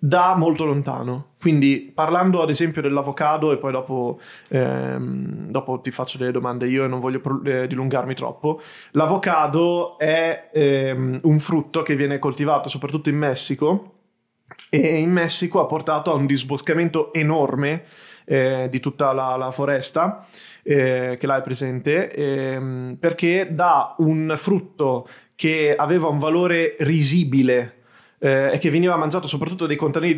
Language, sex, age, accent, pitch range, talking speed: Italian, male, 20-39, native, 135-160 Hz, 140 wpm